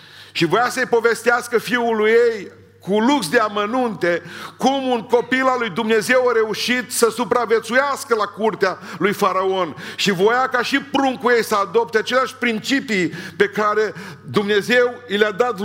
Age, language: 50-69, Romanian